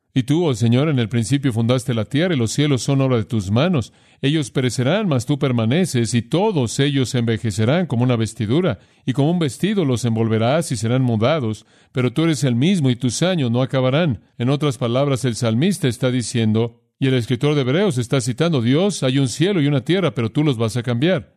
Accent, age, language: Mexican, 40-59, Spanish